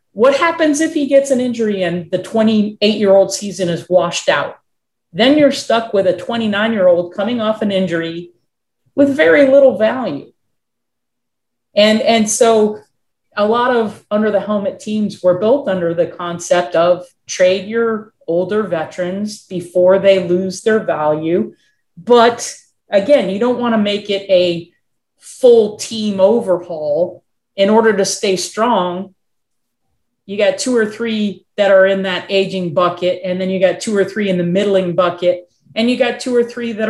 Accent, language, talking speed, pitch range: American, English, 160 wpm, 180-225 Hz